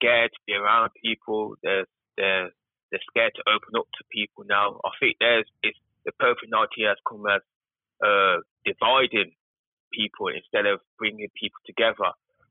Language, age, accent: English, 20-39, British